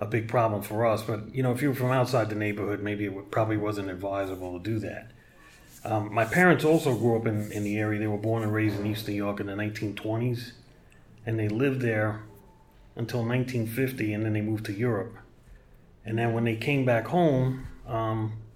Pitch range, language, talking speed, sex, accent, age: 105-125 Hz, English, 215 wpm, male, American, 30-49